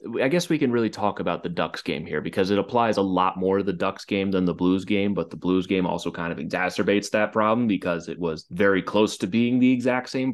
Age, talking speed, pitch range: 30-49, 260 wpm, 90-115 Hz